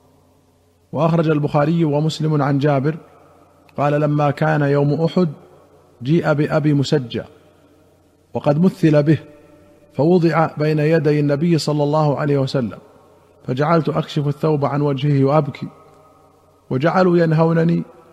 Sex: male